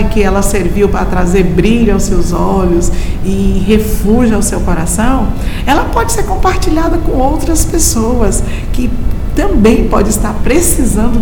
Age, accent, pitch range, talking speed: 50-69, Brazilian, 185-230 Hz, 140 wpm